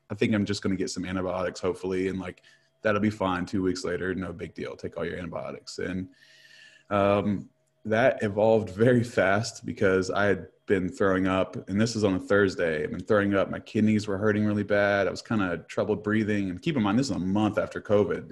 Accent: American